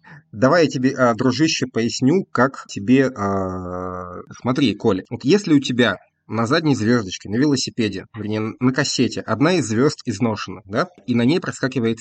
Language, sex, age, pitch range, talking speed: Russian, male, 20-39, 105-130 Hz, 145 wpm